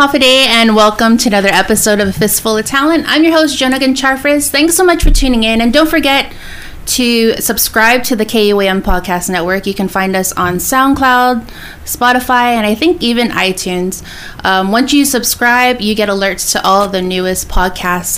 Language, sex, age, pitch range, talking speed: English, female, 20-39, 185-235 Hz, 185 wpm